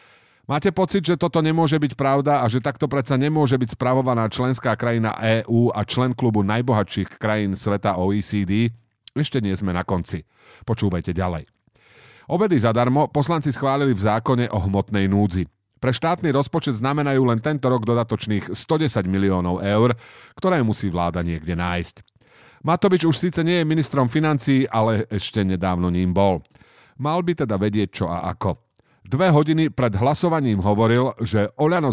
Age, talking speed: 40-59, 155 wpm